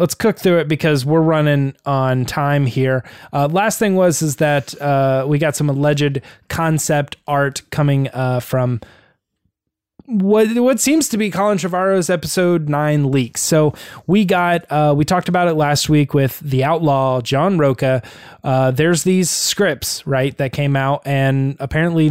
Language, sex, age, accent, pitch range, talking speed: English, male, 20-39, American, 135-165 Hz, 170 wpm